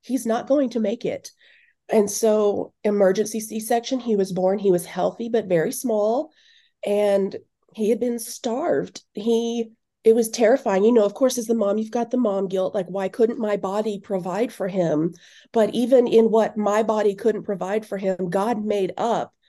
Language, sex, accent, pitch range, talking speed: English, female, American, 200-240 Hz, 190 wpm